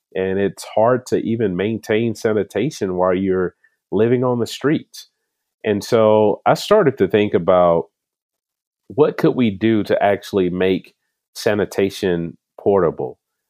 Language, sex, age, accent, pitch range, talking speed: English, male, 40-59, American, 85-95 Hz, 130 wpm